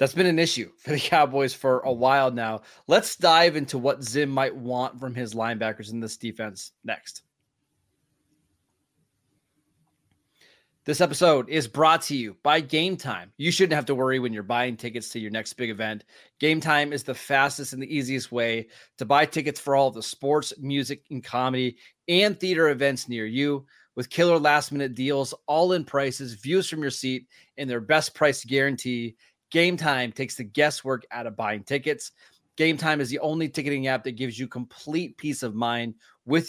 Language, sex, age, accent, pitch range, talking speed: English, male, 20-39, American, 125-155 Hz, 185 wpm